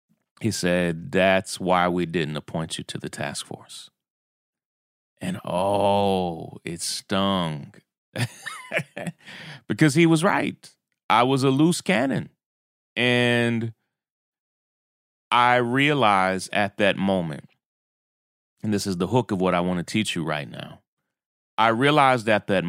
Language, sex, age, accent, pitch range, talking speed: English, male, 30-49, American, 90-115 Hz, 130 wpm